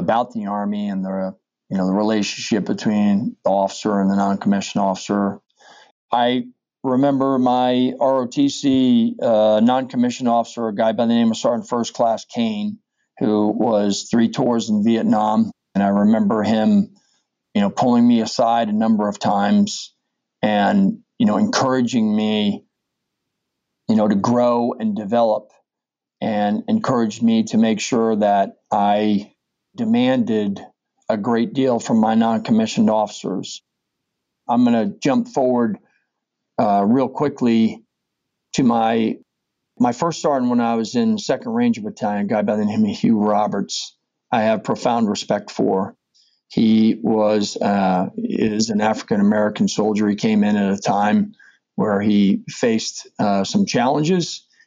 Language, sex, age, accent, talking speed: English, male, 40-59, American, 145 wpm